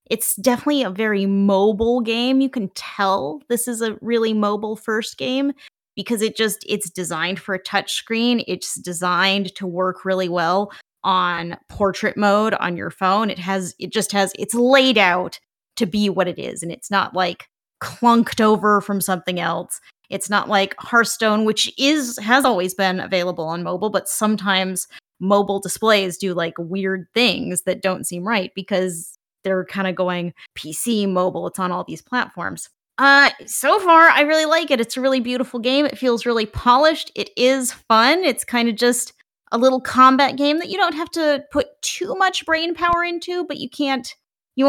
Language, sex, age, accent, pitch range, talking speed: English, female, 20-39, American, 185-250 Hz, 185 wpm